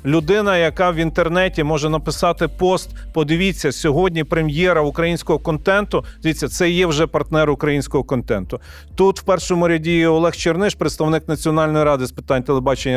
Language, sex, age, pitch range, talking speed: Ukrainian, male, 40-59, 125-165 Hz, 145 wpm